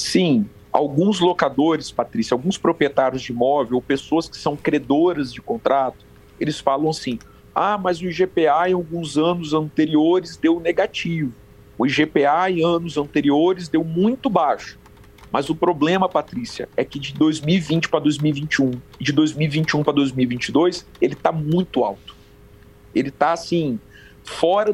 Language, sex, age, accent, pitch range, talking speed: Portuguese, male, 40-59, Brazilian, 140-175 Hz, 145 wpm